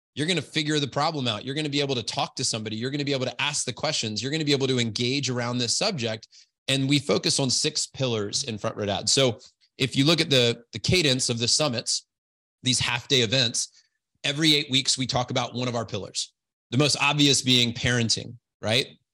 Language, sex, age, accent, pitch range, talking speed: English, male, 30-49, American, 115-145 Hz, 240 wpm